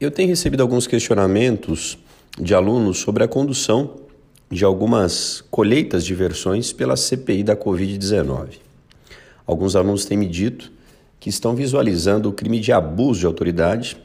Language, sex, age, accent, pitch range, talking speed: Portuguese, male, 40-59, Brazilian, 90-110 Hz, 140 wpm